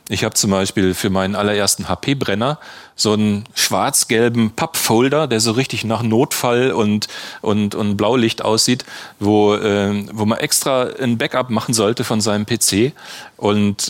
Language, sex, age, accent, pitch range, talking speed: German, male, 40-59, German, 95-115 Hz, 155 wpm